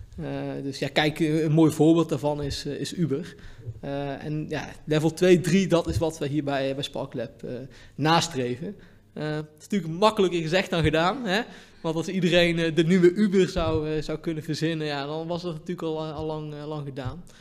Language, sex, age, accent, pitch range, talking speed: Dutch, male, 20-39, Dutch, 140-170 Hz, 195 wpm